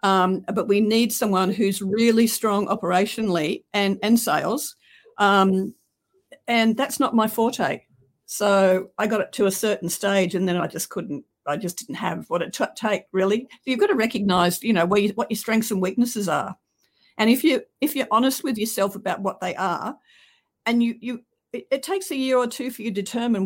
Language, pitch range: English, 185-230 Hz